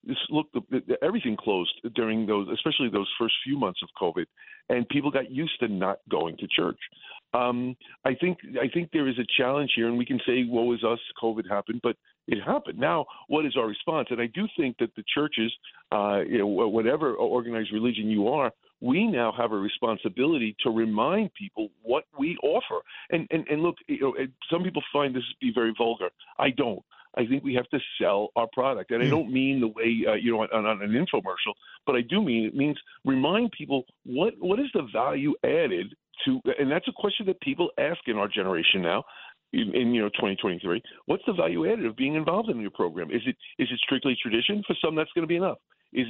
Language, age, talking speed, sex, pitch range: English, 50-69, 215 wpm, male, 115-170 Hz